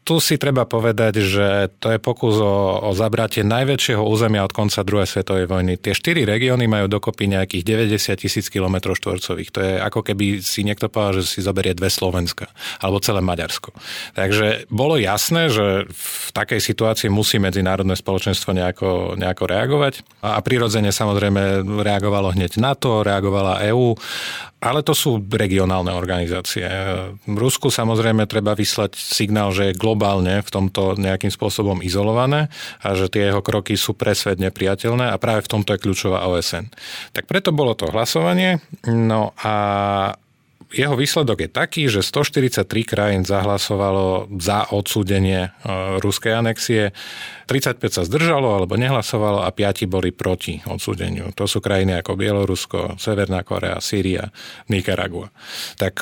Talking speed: 145 wpm